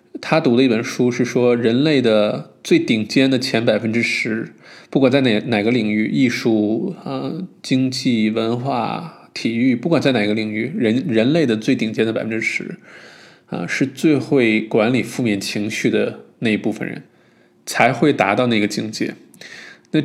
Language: Chinese